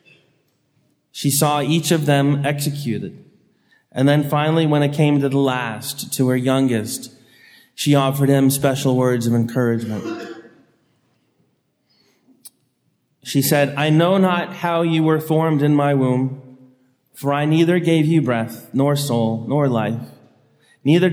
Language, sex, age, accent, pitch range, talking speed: English, male, 30-49, American, 125-150 Hz, 135 wpm